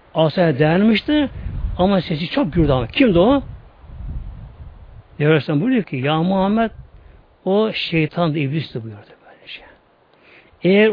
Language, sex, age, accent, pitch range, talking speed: Turkish, male, 60-79, native, 155-210 Hz, 120 wpm